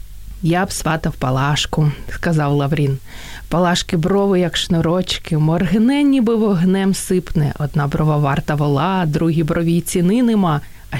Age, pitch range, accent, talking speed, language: 30-49, 155-220 Hz, native, 130 wpm, Ukrainian